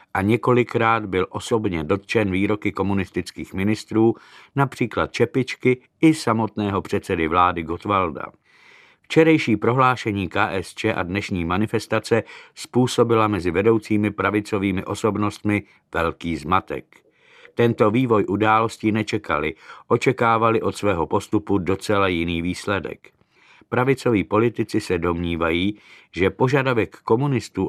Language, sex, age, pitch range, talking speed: Czech, male, 50-69, 95-115 Hz, 100 wpm